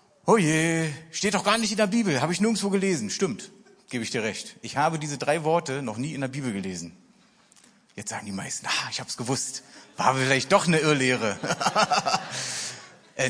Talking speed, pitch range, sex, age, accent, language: 200 wpm, 130-200 Hz, male, 30-49, German, German